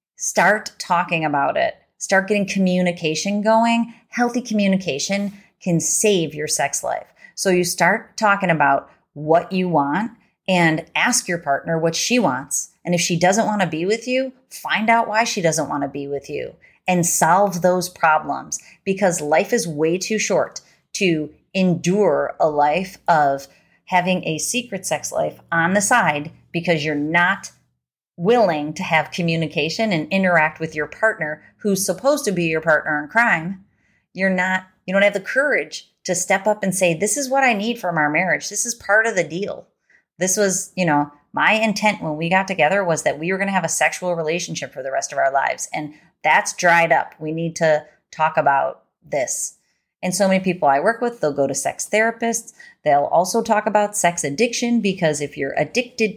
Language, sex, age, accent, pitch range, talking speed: English, female, 30-49, American, 160-210 Hz, 190 wpm